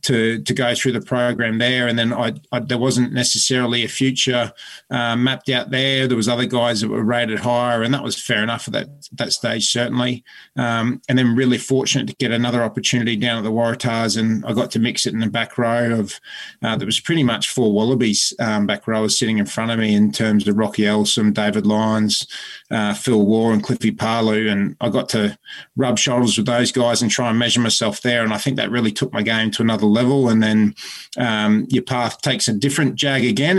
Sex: male